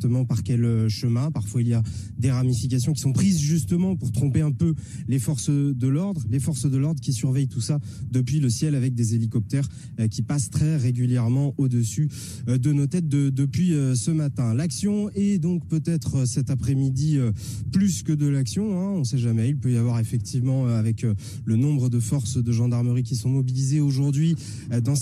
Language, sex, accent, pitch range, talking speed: French, male, French, 125-155 Hz, 190 wpm